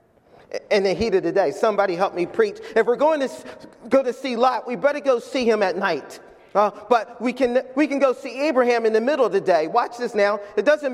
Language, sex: English, male